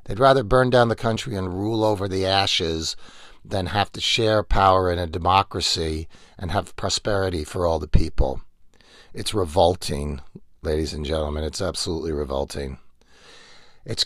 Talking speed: 150 wpm